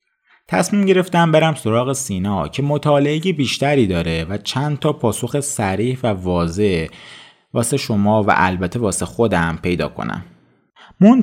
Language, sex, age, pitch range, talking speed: Persian, male, 30-49, 90-130 Hz, 135 wpm